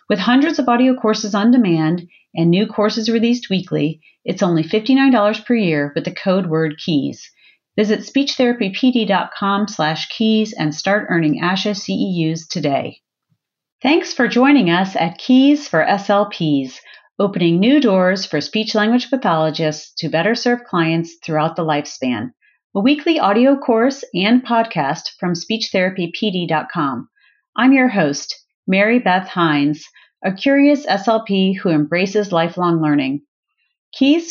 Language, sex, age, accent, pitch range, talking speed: English, female, 40-59, American, 160-235 Hz, 130 wpm